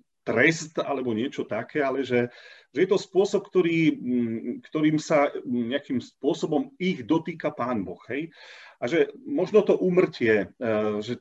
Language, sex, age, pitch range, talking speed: Slovak, male, 40-59, 125-185 Hz, 140 wpm